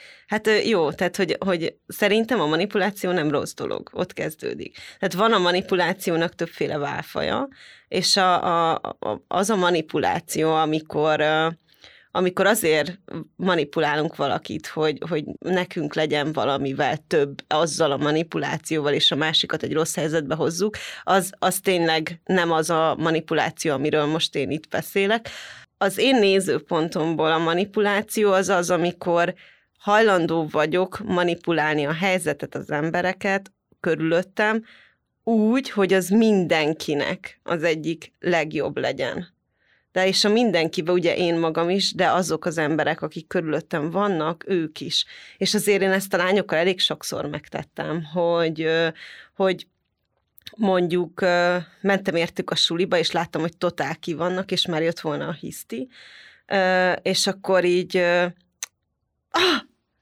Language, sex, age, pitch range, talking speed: Hungarian, female, 20-39, 160-190 Hz, 130 wpm